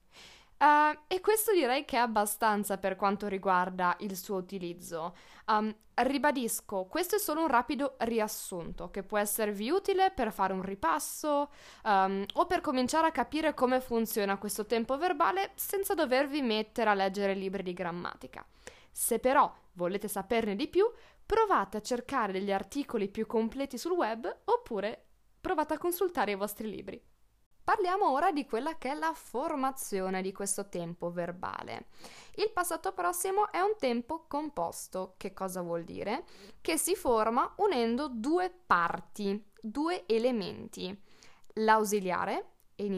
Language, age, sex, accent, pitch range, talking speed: Italian, 20-39, female, native, 195-305 Hz, 140 wpm